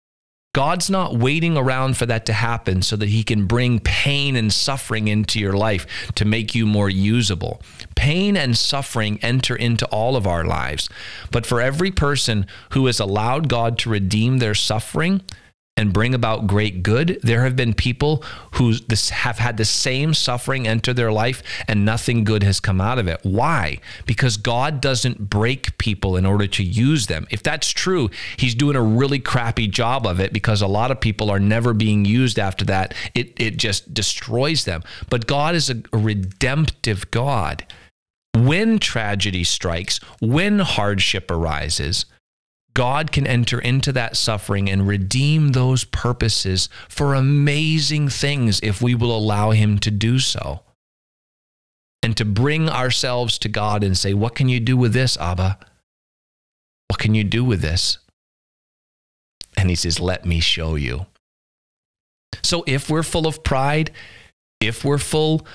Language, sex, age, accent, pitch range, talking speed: English, male, 40-59, American, 100-130 Hz, 165 wpm